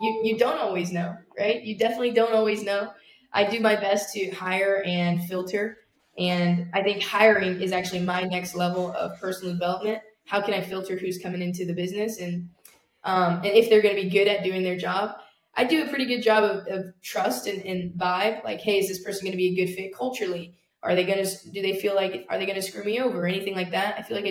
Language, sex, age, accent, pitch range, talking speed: English, female, 10-29, American, 180-215 Hz, 245 wpm